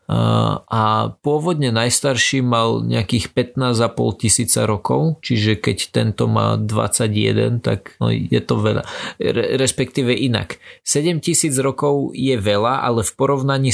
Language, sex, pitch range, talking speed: Slovak, male, 105-125 Hz, 130 wpm